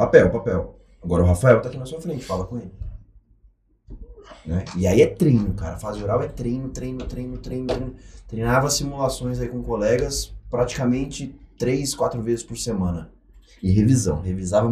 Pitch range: 100-135 Hz